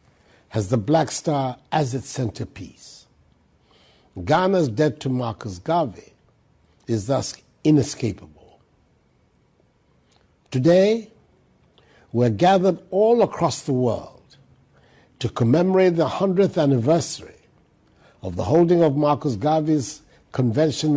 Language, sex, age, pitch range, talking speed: English, male, 60-79, 120-165 Hz, 95 wpm